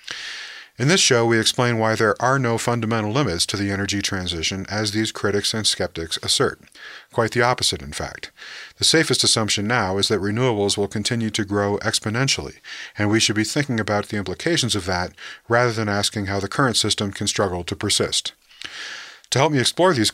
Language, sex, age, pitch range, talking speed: English, male, 40-59, 100-115 Hz, 190 wpm